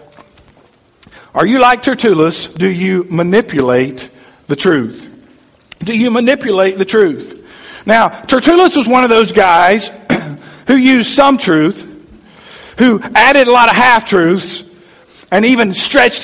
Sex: male